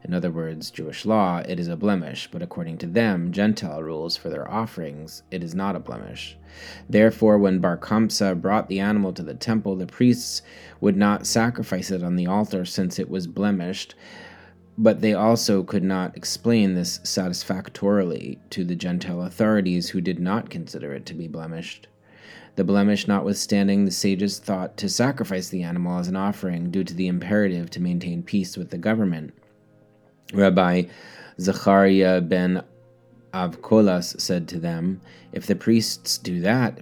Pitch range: 90-105 Hz